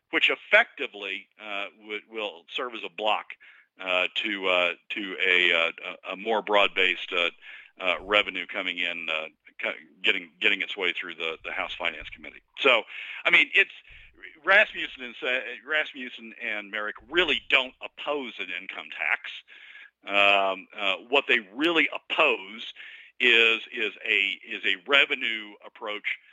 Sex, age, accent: male, 50-69, American